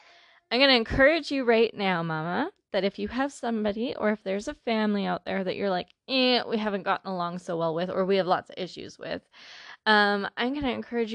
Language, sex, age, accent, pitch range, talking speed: English, female, 20-39, American, 190-240 Hz, 230 wpm